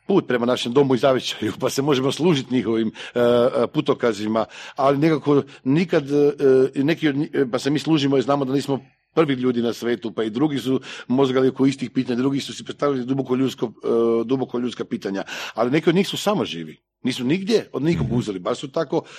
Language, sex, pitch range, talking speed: Croatian, male, 120-165 Hz, 195 wpm